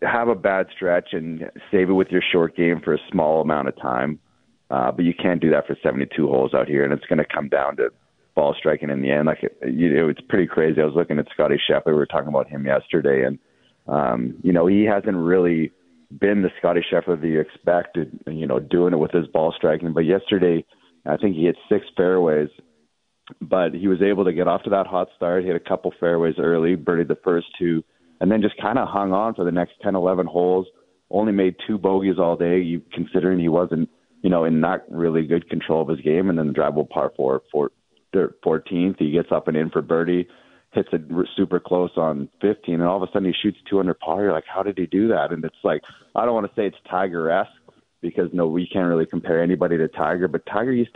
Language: English